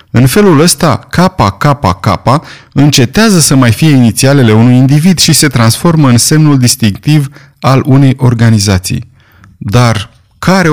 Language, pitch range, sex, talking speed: Romanian, 105-140 Hz, male, 135 wpm